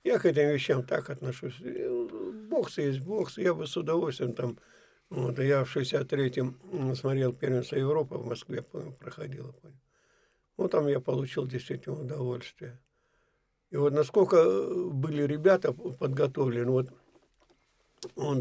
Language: Russian